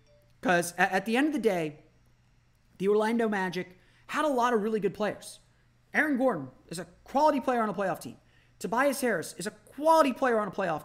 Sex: male